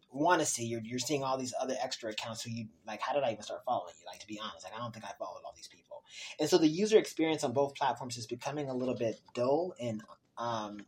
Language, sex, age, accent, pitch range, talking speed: English, male, 30-49, American, 120-155 Hz, 275 wpm